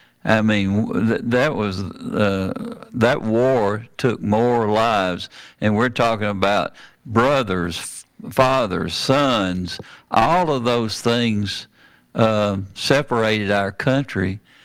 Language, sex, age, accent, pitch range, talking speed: English, male, 60-79, American, 100-115 Hz, 110 wpm